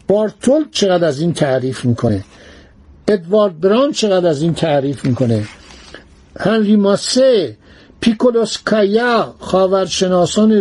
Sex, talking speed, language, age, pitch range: male, 95 wpm, Persian, 60-79, 155-210 Hz